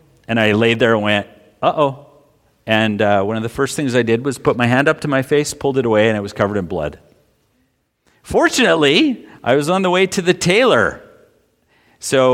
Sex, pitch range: male, 105-145 Hz